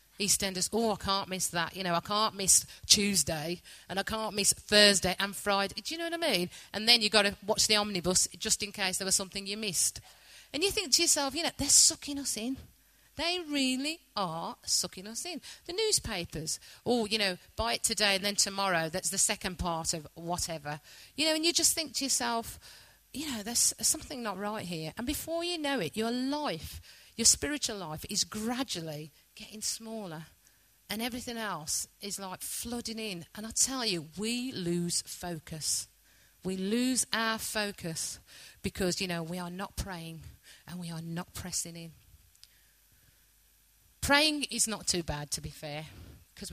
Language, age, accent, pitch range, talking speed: English, 40-59, British, 170-225 Hz, 185 wpm